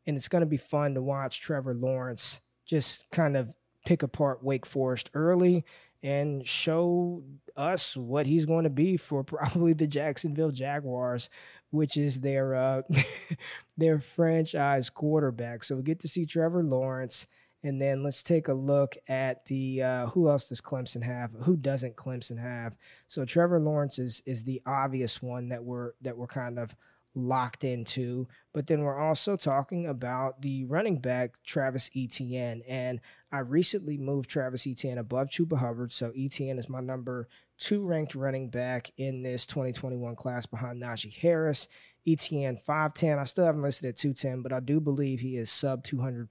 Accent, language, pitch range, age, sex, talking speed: American, English, 125-150 Hz, 20-39, male, 170 wpm